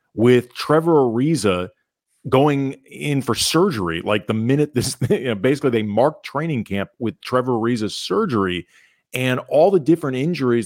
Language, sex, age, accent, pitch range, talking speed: English, male, 40-59, American, 110-150 Hz, 160 wpm